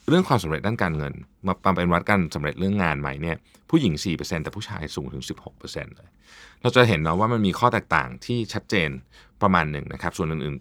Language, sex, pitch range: Thai, male, 80-120 Hz